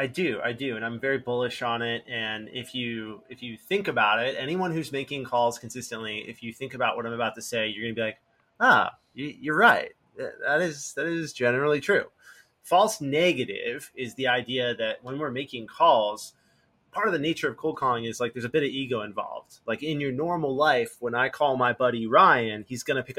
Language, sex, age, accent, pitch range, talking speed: English, male, 30-49, American, 120-160 Hz, 225 wpm